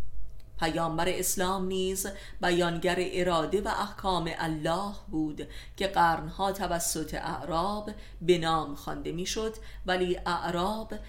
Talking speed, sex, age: 105 wpm, female, 30-49